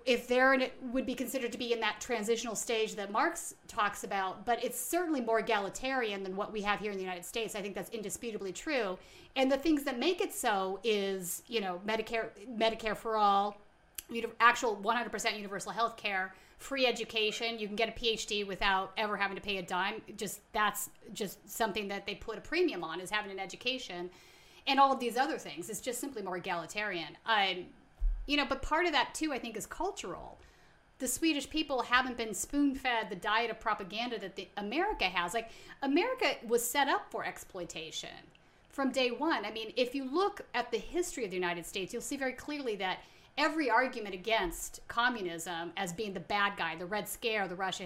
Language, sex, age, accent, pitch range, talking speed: English, female, 30-49, American, 195-255 Hz, 200 wpm